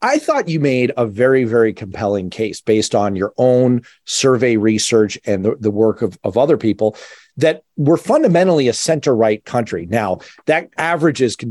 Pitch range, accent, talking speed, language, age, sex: 105-150 Hz, American, 170 wpm, English, 40-59, male